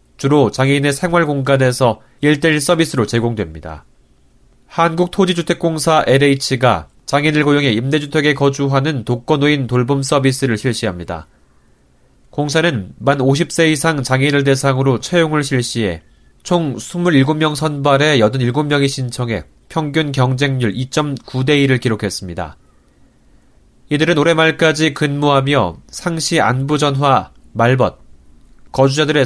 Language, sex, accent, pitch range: Korean, male, native, 115-155 Hz